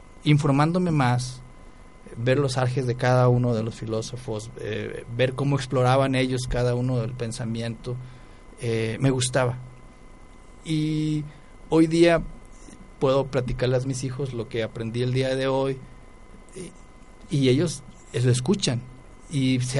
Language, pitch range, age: Spanish, 125-145 Hz, 50-69